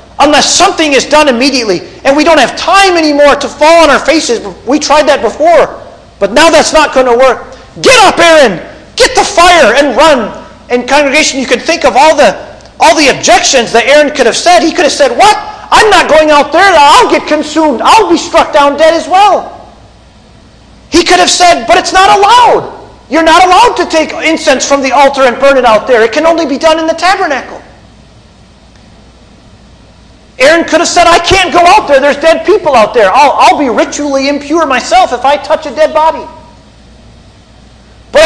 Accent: American